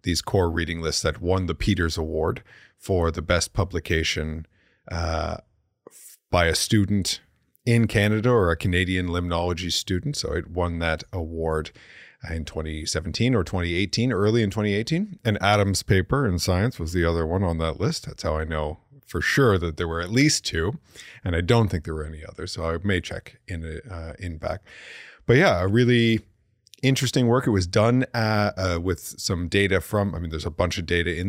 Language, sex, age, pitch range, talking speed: English, male, 40-59, 85-110 Hz, 190 wpm